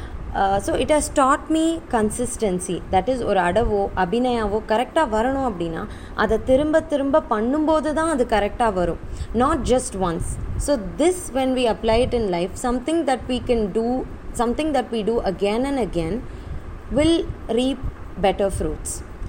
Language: Tamil